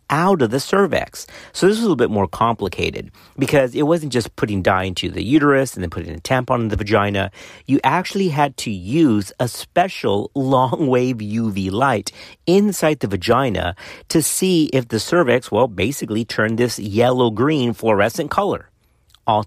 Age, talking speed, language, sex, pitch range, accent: 40-59, 175 wpm, English, male, 100-155 Hz, American